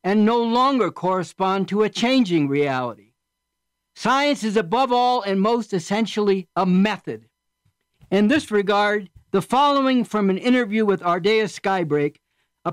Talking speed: 135 wpm